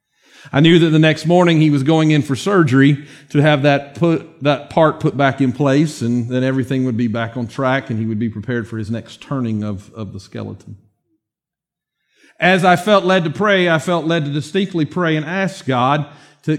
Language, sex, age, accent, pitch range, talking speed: English, male, 40-59, American, 135-170 Hz, 215 wpm